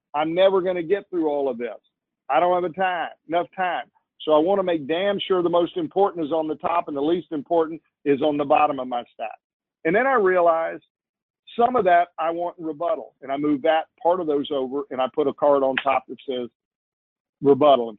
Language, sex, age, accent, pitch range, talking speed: English, male, 50-69, American, 130-180 Hz, 220 wpm